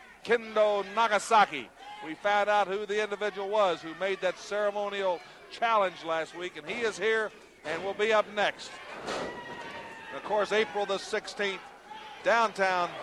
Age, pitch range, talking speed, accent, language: 50-69, 180-215 Hz, 145 wpm, American, English